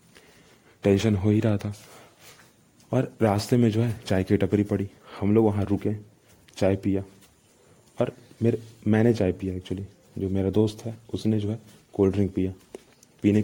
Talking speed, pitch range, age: 165 wpm, 95-110 Hz, 30-49